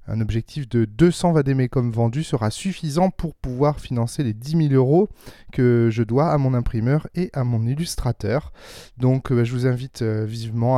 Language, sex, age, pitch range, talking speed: French, male, 20-39, 125-155 Hz, 175 wpm